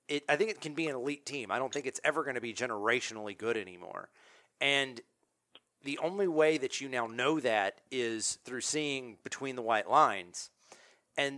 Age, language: 40-59, English